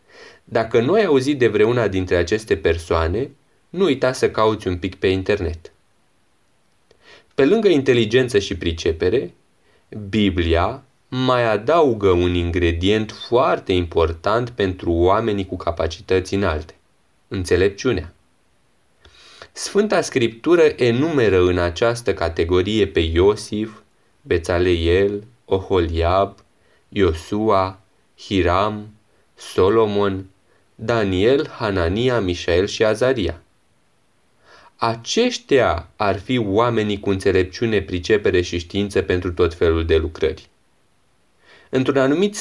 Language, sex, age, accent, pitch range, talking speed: Romanian, male, 20-39, native, 90-120 Hz, 100 wpm